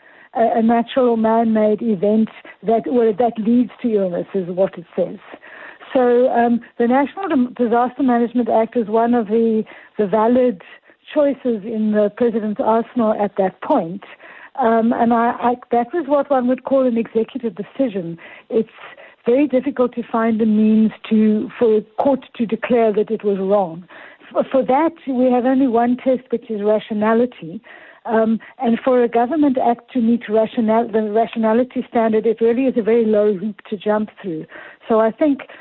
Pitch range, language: 215-245 Hz, English